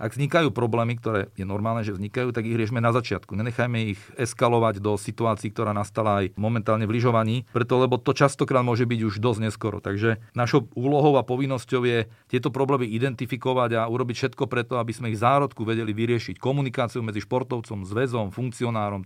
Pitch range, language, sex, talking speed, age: 110-130 Hz, Slovak, male, 180 wpm, 40-59